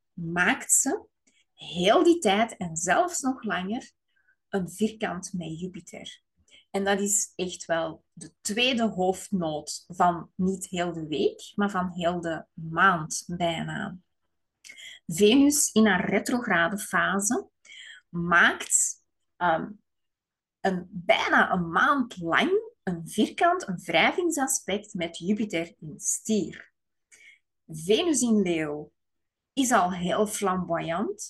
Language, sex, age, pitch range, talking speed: Dutch, female, 20-39, 175-235 Hz, 110 wpm